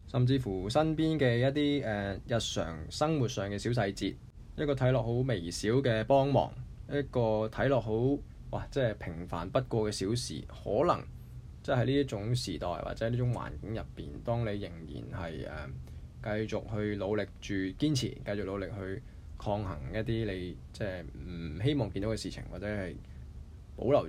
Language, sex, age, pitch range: Chinese, male, 20-39, 90-125 Hz